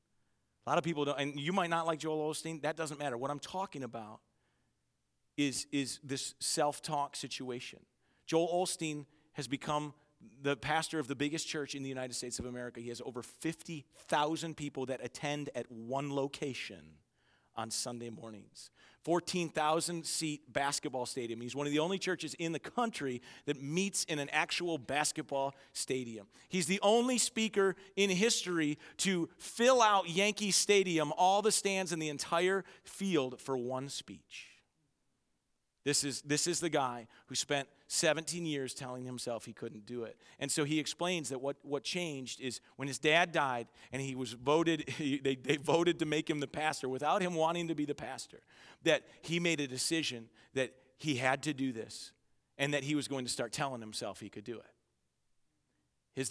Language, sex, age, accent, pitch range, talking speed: English, male, 40-59, American, 130-165 Hz, 180 wpm